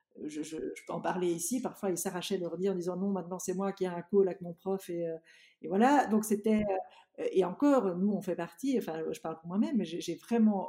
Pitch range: 175-225 Hz